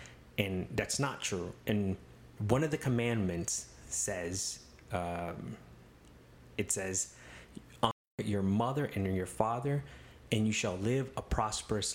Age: 30-49